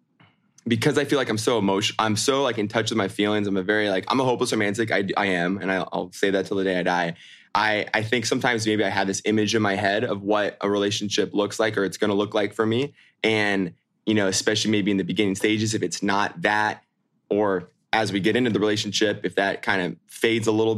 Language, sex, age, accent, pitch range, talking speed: English, male, 20-39, American, 95-110 Hz, 255 wpm